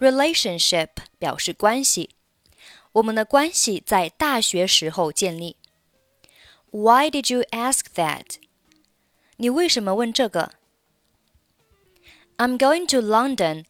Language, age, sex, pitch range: Chinese, 20-39, female, 175-250 Hz